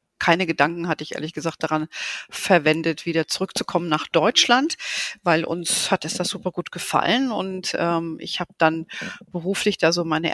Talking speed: 170 wpm